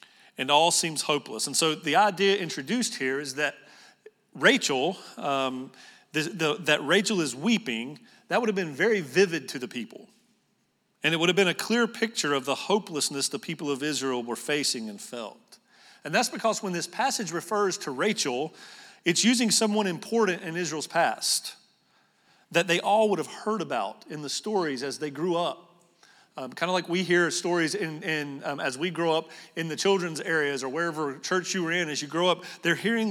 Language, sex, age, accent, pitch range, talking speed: English, male, 40-59, American, 150-200 Hz, 195 wpm